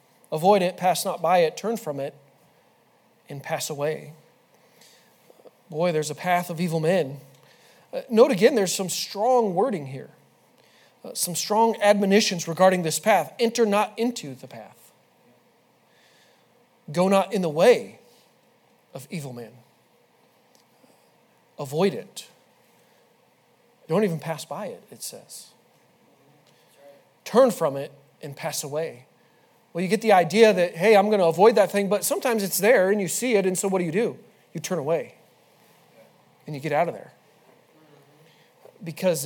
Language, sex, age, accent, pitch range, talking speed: English, male, 40-59, American, 160-215 Hz, 150 wpm